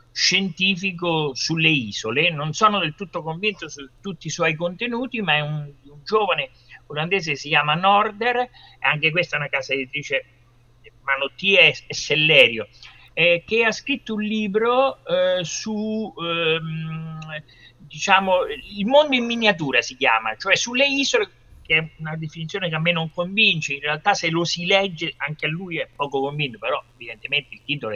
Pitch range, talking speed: 135-190 Hz, 160 wpm